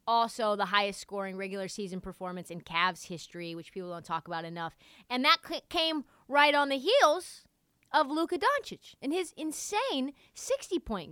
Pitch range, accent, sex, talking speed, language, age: 195-315 Hz, American, female, 160 wpm, English, 30-49